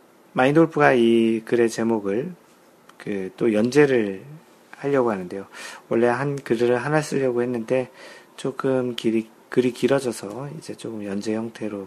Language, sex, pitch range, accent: Korean, male, 110-135 Hz, native